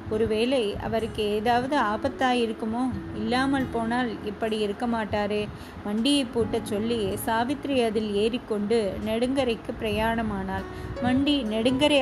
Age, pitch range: 20-39, 215-255 Hz